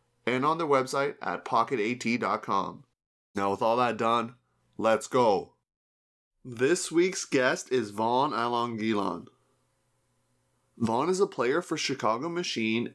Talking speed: 120 wpm